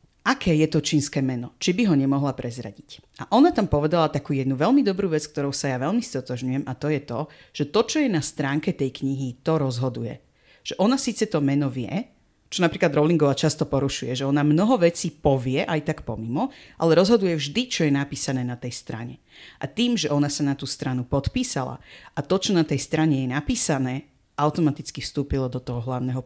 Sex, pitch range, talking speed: female, 135-180 Hz, 200 wpm